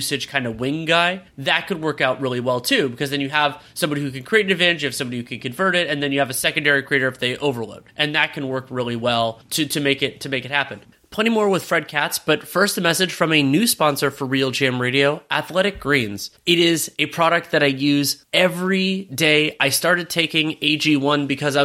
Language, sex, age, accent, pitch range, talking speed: English, male, 30-49, American, 130-160 Hz, 240 wpm